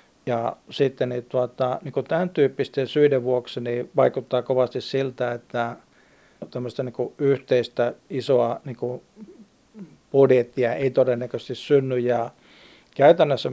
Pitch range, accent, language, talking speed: 125-140 Hz, native, Finnish, 110 wpm